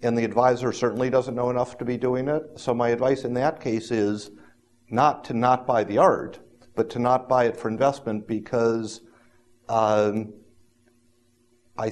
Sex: male